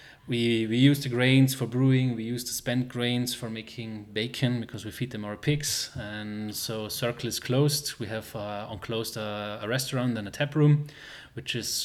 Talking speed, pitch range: 200 wpm, 110-130 Hz